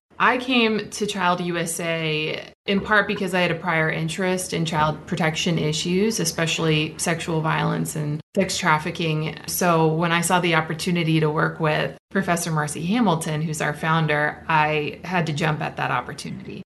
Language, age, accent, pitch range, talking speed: English, 20-39, American, 160-190 Hz, 160 wpm